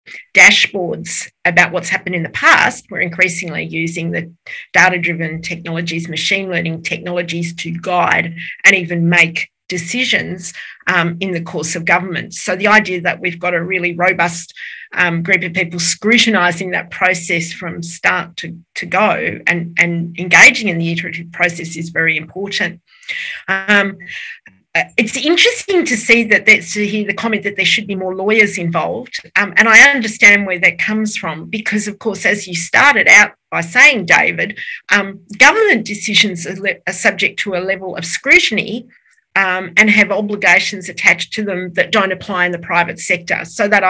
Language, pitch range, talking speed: English, 170-205 Hz, 165 wpm